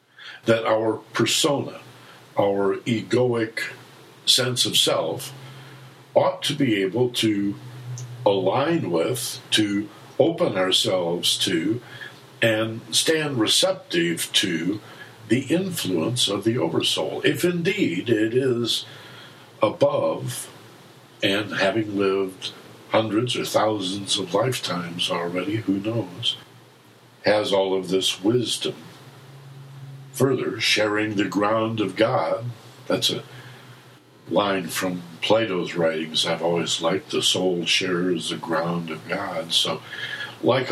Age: 60-79